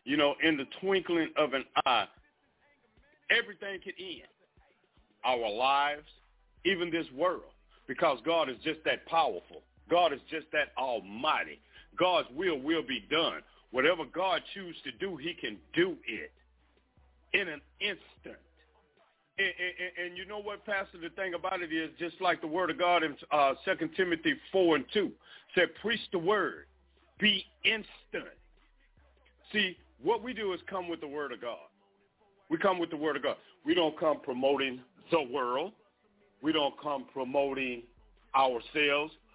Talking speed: 160 wpm